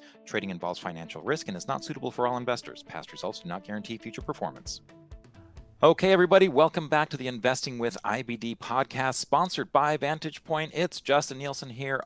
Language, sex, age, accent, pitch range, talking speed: English, male, 40-59, American, 100-135 Hz, 180 wpm